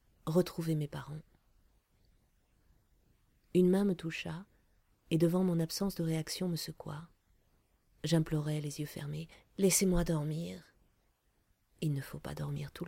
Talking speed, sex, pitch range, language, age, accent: 125 wpm, female, 140-170 Hz, French, 30-49, French